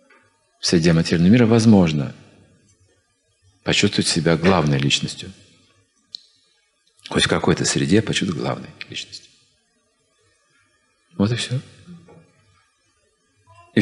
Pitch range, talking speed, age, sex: 95-145 Hz, 85 wpm, 40-59, male